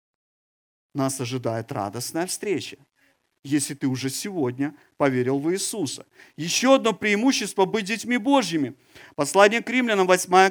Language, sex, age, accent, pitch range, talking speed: Ukrainian, male, 50-69, native, 150-215 Hz, 120 wpm